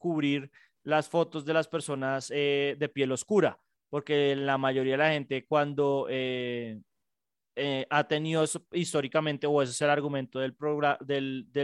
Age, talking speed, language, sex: 20-39, 165 wpm, Spanish, male